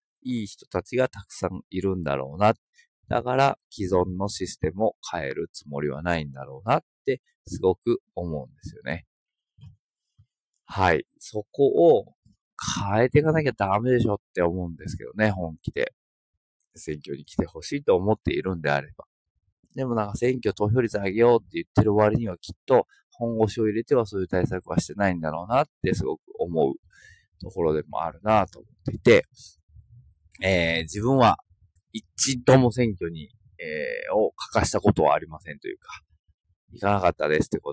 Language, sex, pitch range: Japanese, male, 85-120 Hz